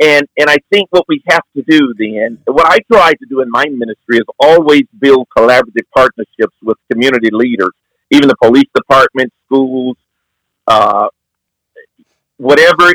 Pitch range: 120-150 Hz